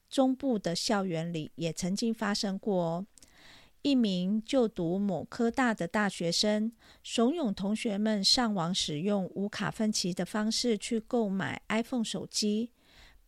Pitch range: 195-255 Hz